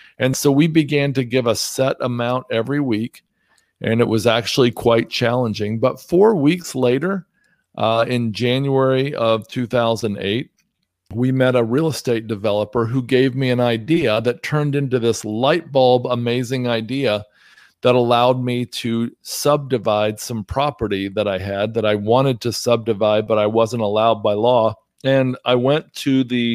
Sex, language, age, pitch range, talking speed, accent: male, English, 40-59, 110-130 Hz, 160 wpm, American